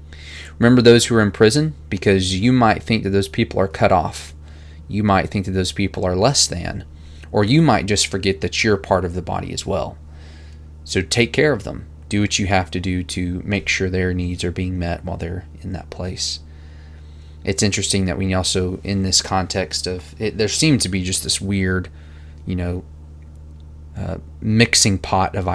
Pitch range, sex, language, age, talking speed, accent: 75-100 Hz, male, English, 20-39, 195 wpm, American